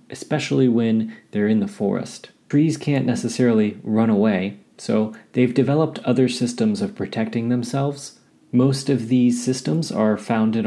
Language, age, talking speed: English, 30-49, 140 wpm